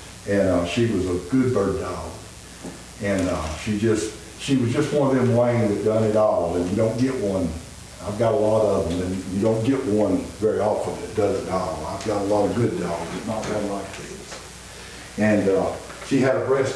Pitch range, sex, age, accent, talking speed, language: 90-115 Hz, male, 60-79, American, 225 wpm, English